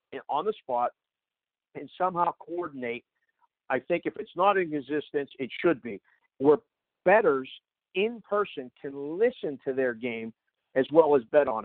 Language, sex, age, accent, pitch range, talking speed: English, male, 50-69, American, 135-195 Hz, 155 wpm